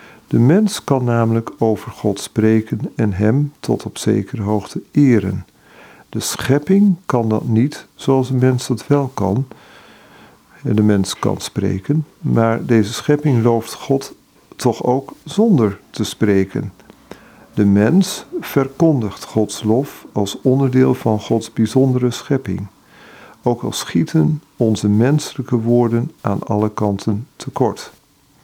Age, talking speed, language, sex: 50-69, 125 wpm, Dutch, male